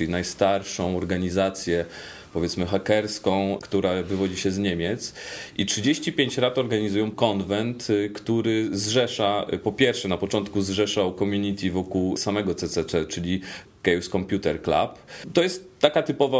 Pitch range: 95-110 Hz